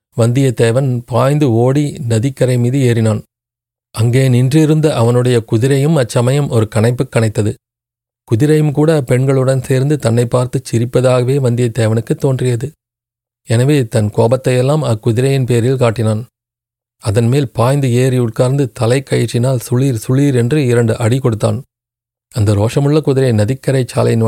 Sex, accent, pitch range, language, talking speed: male, native, 120-135 Hz, Tamil, 110 wpm